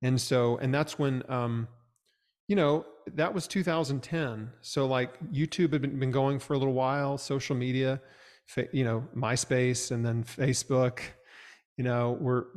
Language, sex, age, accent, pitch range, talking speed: English, male, 40-59, American, 120-145 Hz, 160 wpm